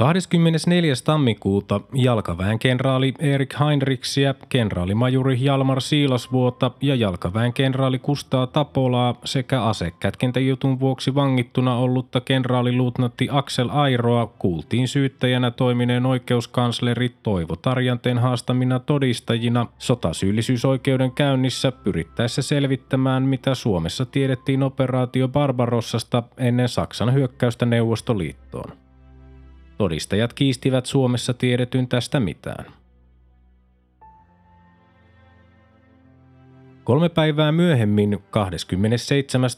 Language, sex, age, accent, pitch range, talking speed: Finnish, male, 20-39, native, 110-135 Hz, 80 wpm